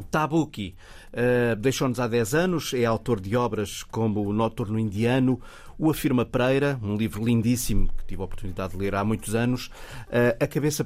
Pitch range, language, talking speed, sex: 105-130 Hz, Portuguese, 175 wpm, male